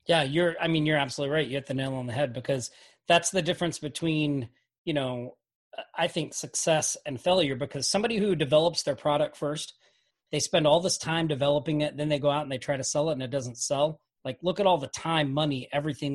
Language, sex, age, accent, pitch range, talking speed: English, male, 30-49, American, 145-175 Hz, 230 wpm